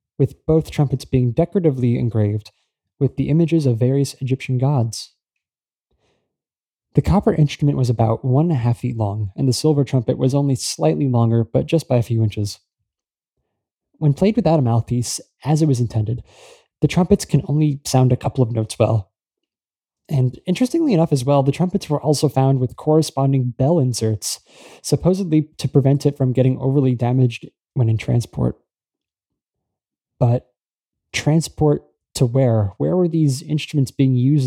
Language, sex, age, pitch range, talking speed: English, male, 20-39, 115-150 Hz, 160 wpm